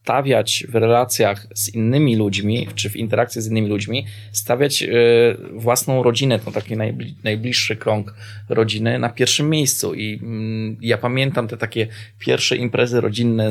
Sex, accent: male, native